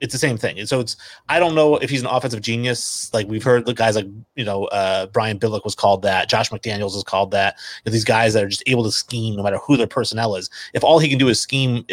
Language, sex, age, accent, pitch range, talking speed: English, male, 30-49, American, 105-125 Hz, 275 wpm